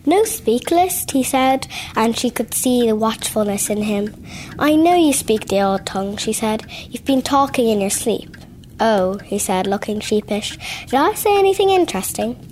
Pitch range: 200-245 Hz